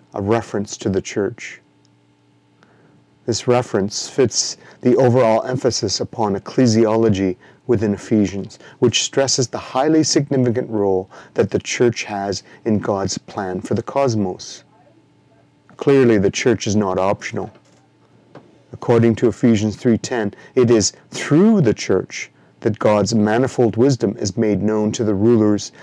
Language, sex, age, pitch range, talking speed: English, male, 30-49, 100-120 Hz, 130 wpm